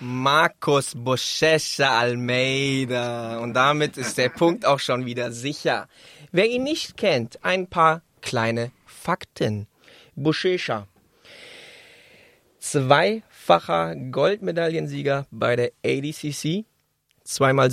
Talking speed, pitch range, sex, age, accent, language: 90 wpm, 125-160 Hz, male, 20-39, German, German